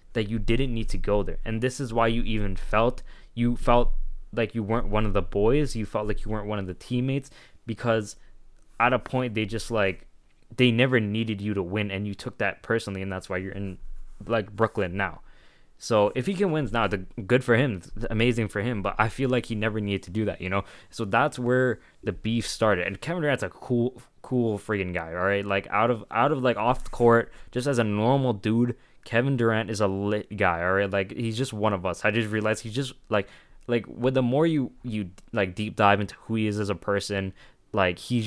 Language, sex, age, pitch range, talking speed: English, male, 20-39, 100-120 Hz, 235 wpm